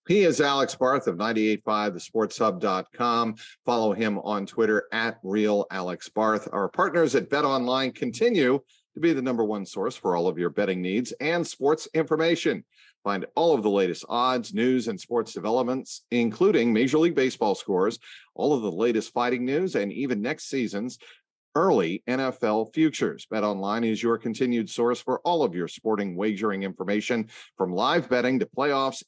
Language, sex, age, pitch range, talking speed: English, male, 50-69, 105-130 Hz, 170 wpm